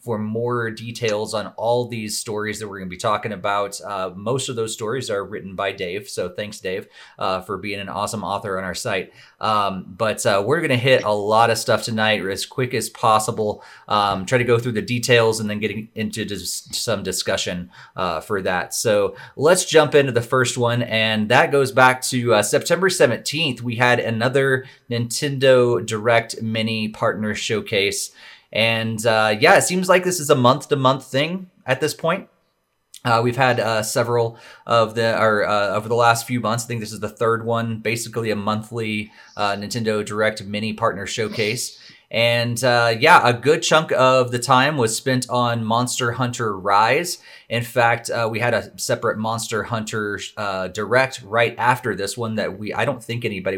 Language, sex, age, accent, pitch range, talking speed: English, male, 30-49, American, 110-130 Hz, 195 wpm